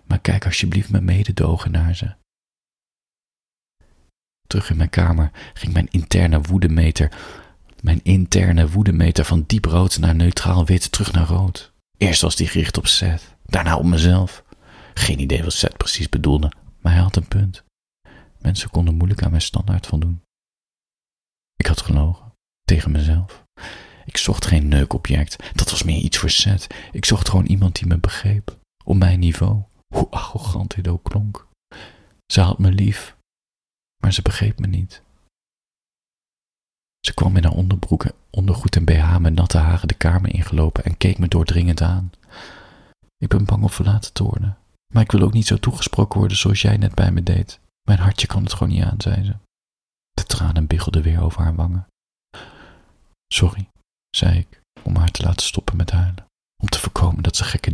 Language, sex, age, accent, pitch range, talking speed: Dutch, male, 40-59, Dutch, 85-100 Hz, 170 wpm